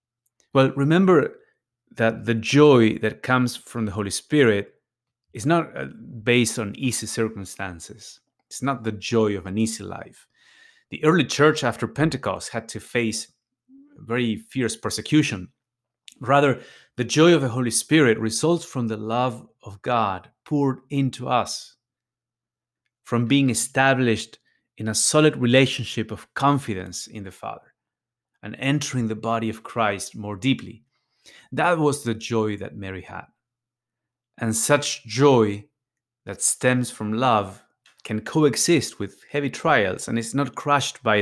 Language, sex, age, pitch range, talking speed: English, male, 30-49, 110-140 Hz, 140 wpm